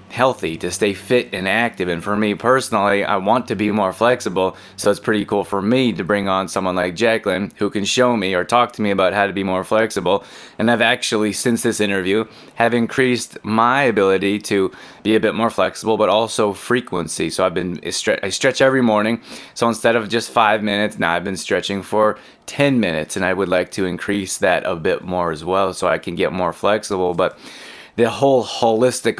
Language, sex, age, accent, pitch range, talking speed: English, male, 20-39, American, 95-115 Hz, 210 wpm